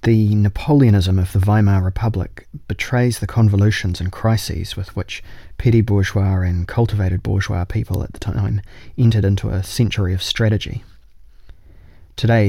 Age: 20-39